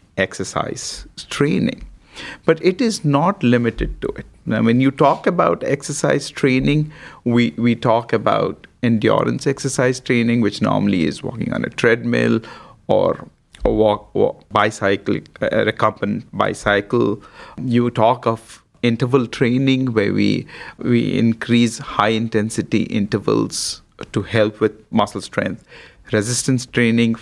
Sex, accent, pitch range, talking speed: male, Indian, 110-140 Hz, 125 wpm